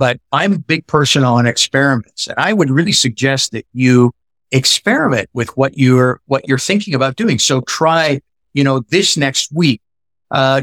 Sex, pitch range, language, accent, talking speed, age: male, 120-145 Hz, English, American, 175 wpm, 50-69